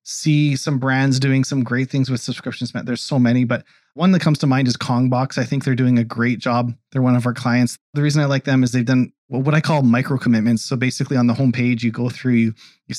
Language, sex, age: English, male, 30-49